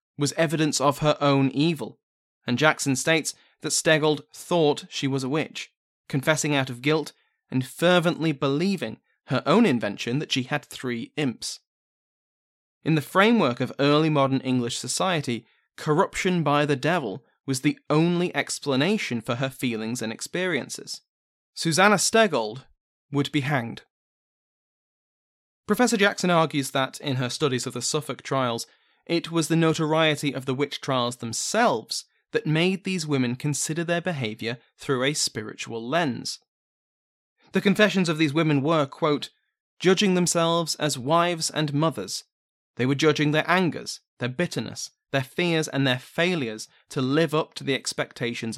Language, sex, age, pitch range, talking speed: English, male, 20-39, 130-165 Hz, 145 wpm